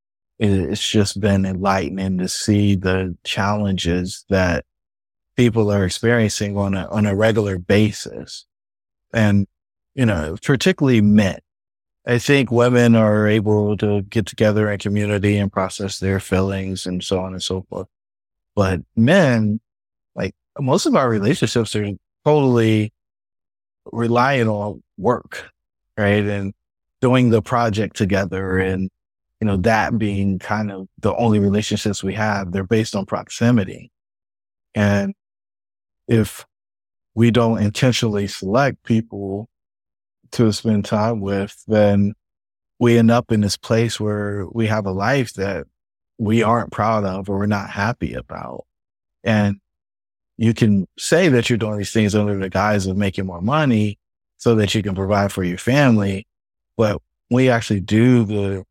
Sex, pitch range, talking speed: male, 95-115 Hz, 140 wpm